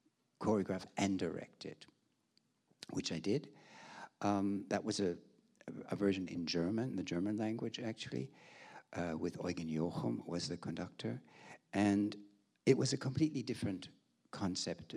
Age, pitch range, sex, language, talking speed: 60-79, 90-110 Hz, male, English, 130 wpm